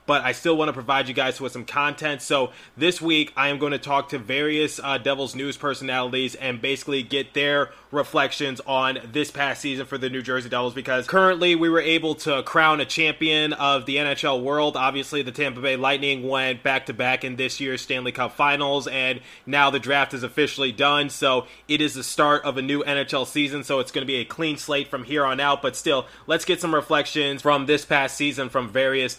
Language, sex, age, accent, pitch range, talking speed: English, male, 20-39, American, 135-150 Hz, 220 wpm